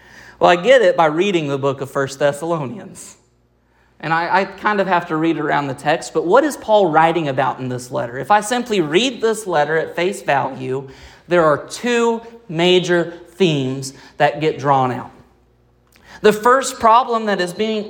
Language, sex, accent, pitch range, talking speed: English, male, American, 135-195 Hz, 185 wpm